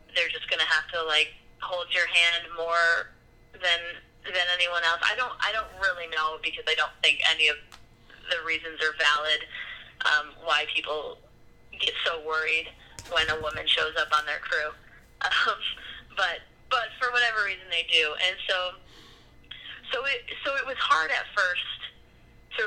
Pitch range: 165-215 Hz